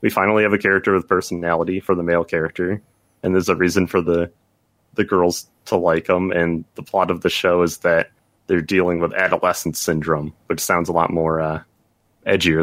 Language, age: English, 30-49